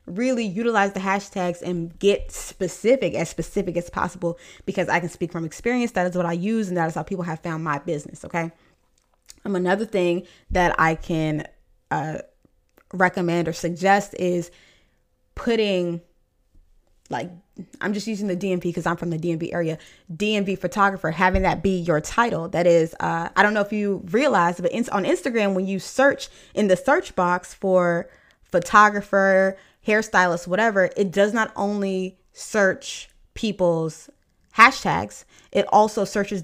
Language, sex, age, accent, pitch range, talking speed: English, female, 20-39, American, 170-205 Hz, 160 wpm